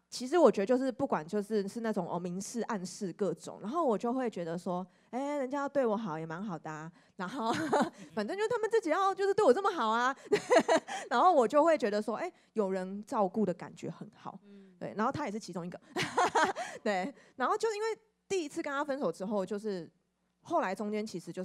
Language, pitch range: Chinese, 190-240 Hz